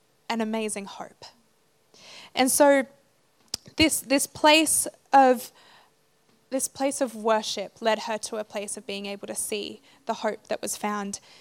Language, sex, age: English, female, 20-39